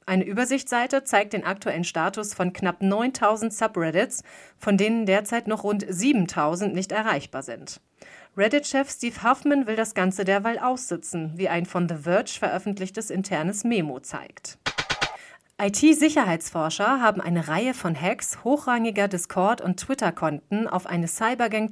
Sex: female